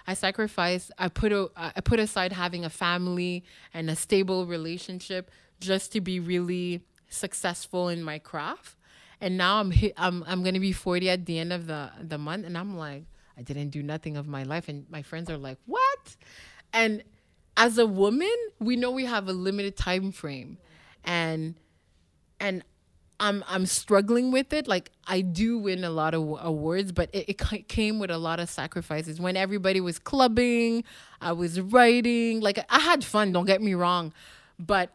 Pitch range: 155-195 Hz